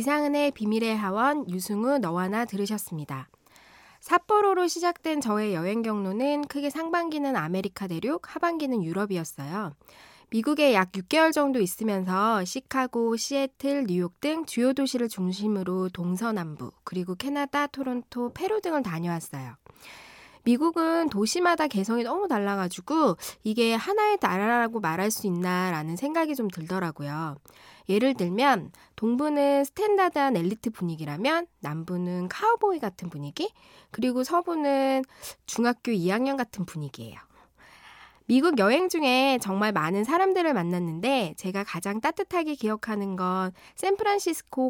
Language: Korean